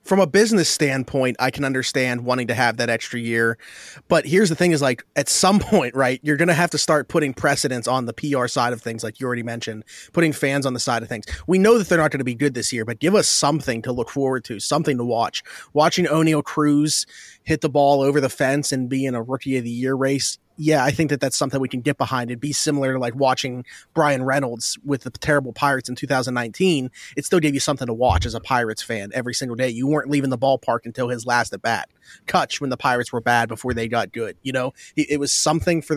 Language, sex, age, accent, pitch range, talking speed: English, male, 30-49, American, 120-150 Hz, 255 wpm